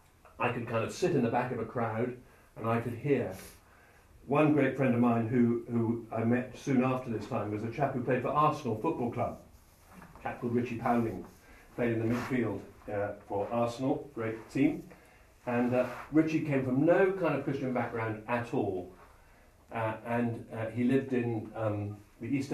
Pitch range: 110-140 Hz